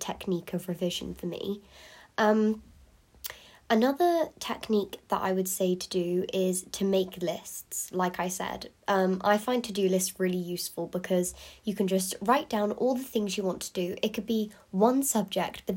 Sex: female